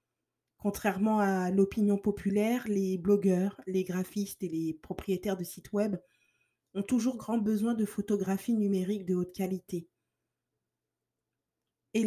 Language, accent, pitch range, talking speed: French, French, 195-230 Hz, 125 wpm